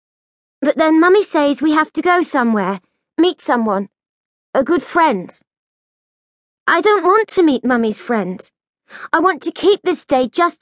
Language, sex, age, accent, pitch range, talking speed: English, female, 30-49, British, 255-335 Hz, 160 wpm